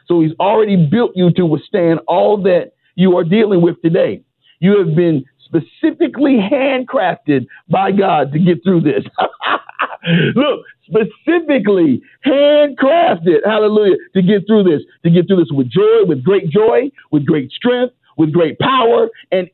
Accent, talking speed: American, 150 wpm